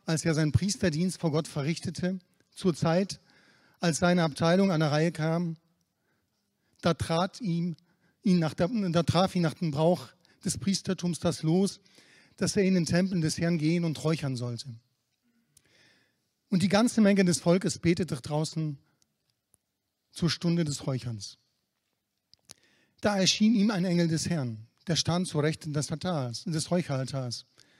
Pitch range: 150-185 Hz